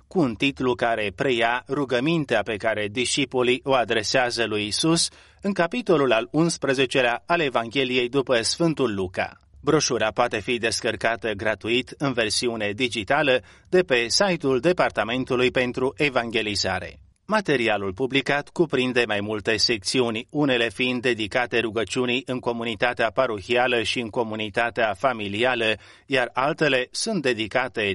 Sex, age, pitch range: male, 30-49, 110-140 Hz